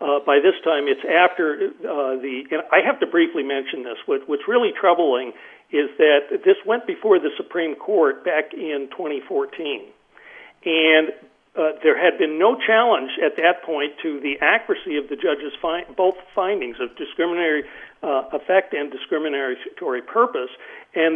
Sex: male